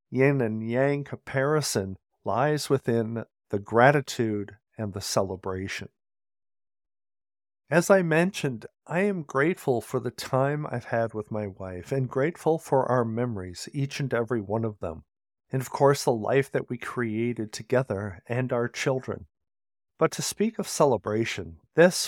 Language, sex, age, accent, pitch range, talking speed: English, male, 50-69, American, 105-145 Hz, 145 wpm